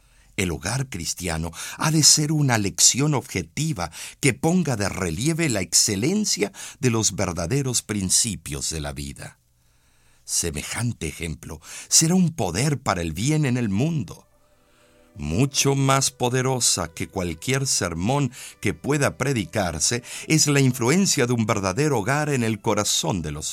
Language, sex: Spanish, male